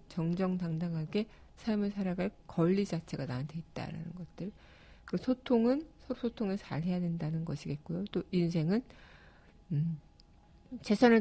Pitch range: 165-200 Hz